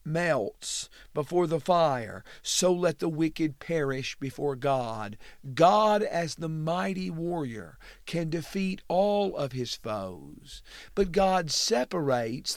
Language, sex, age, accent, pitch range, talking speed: English, male, 50-69, American, 140-190 Hz, 120 wpm